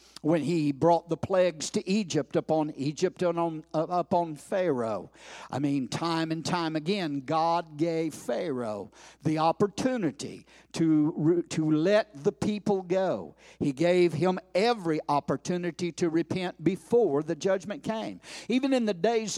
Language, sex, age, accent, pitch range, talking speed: English, male, 60-79, American, 165-220 Hz, 140 wpm